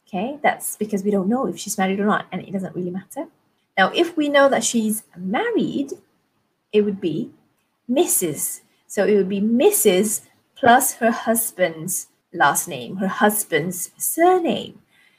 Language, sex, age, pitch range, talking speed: English, female, 30-49, 200-255 Hz, 160 wpm